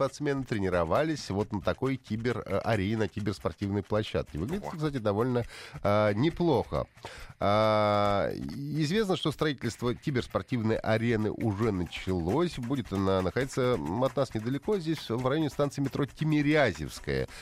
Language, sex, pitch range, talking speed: Russian, male, 90-130 Hz, 115 wpm